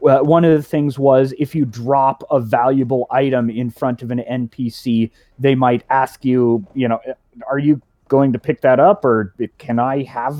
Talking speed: 190 wpm